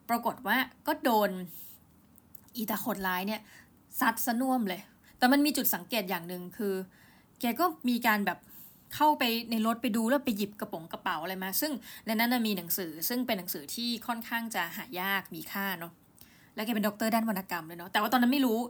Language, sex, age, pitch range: Thai, female, 20-39, 190-245 Hz